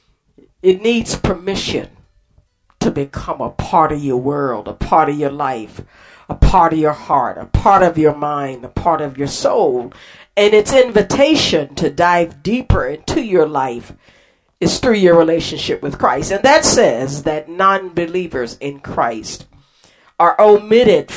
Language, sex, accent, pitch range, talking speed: English, female, American, 140-195 Hz, 155 wpm